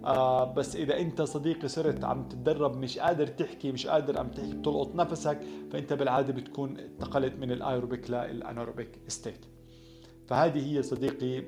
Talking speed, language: 145 wpm, Arabic